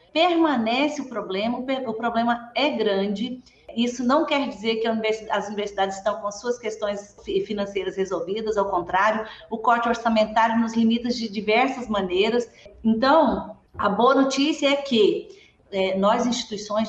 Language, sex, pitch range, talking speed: Portuguese, female, 215-275 Hz, 135 wpm